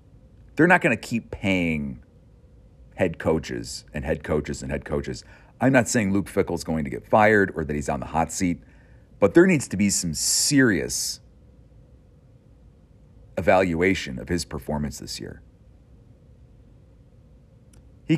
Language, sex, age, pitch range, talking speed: English, male, 40-59, 80-115 Hz, 145 wpm